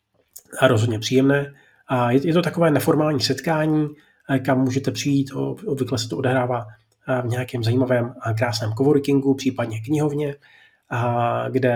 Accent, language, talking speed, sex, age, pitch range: native, Czech, 120 wpm, male, 30-49, 115-135 Hz